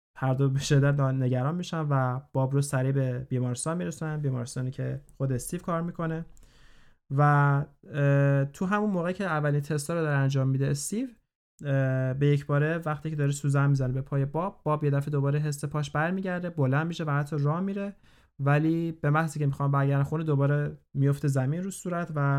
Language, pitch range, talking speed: Persian, 130-155 Hz, 185 wpm